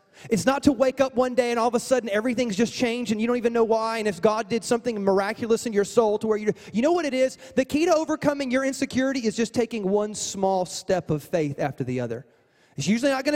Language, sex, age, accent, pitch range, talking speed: English, male, 30-49, American, 200-255 Hz, 265 wpm